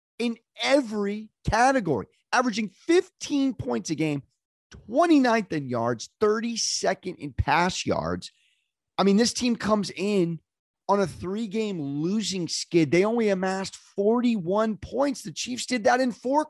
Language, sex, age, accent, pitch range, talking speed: English, male, 30-49, American, 165-230 Hz, 135 wpm